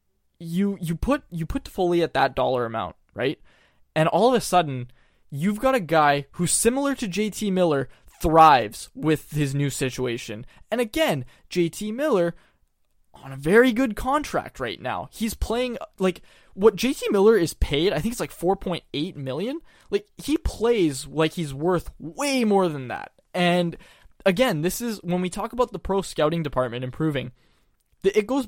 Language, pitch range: English, 140-215 Hz